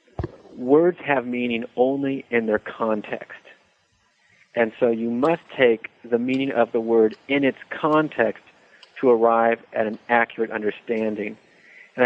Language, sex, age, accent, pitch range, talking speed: English, male, 40-59, American, 110-130 Hz, 135 wpm